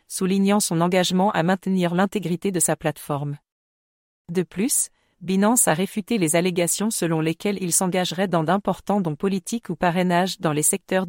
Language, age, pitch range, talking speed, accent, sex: English, 40-59, 170-200 Hz, 155 wpm, French, female